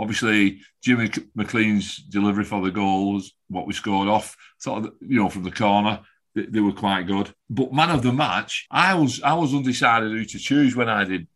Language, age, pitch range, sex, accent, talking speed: English, 40-59, 90-110 Hz, male, British, 205 wpm